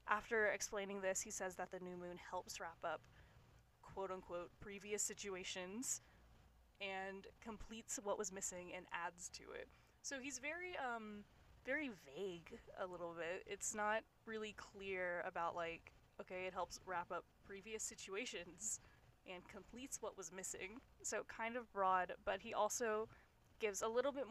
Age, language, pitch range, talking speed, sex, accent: 10-29, English, 180-215 Hz, 155 wpm, female, American